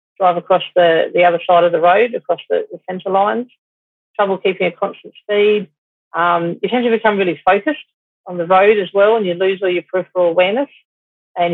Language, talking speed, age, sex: English, 205 wpm, 40-59, female